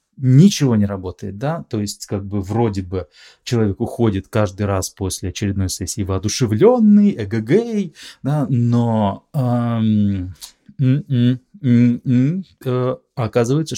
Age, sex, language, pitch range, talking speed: 20-39, male, Russian, 100-125 Hz, 95 wpm